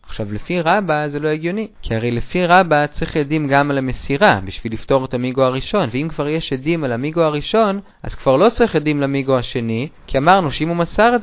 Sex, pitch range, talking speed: male, 115-175 Hz, 215 wpm